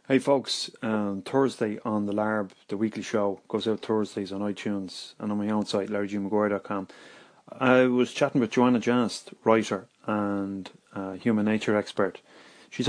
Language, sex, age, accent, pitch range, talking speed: English, male, 30-49, Irish, 105-125 Hz, 160 wpm